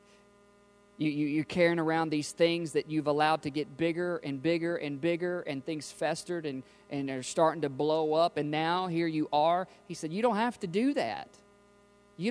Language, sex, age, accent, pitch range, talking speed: English, male, 40-59, American, 145-200 Hz, 200 wpm